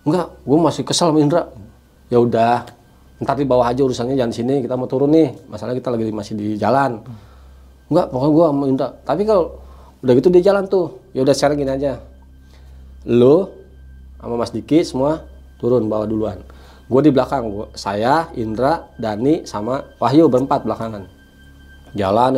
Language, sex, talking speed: Indonesian, male, 165 wpm